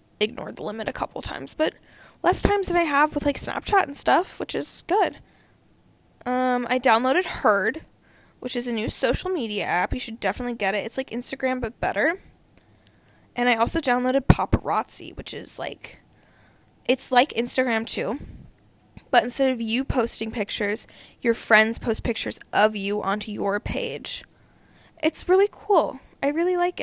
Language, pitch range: English, 225-285 Hz